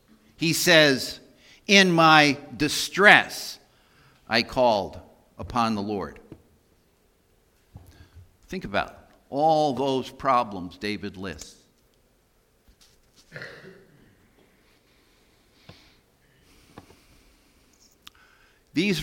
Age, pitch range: 60-79, 95-130 Hz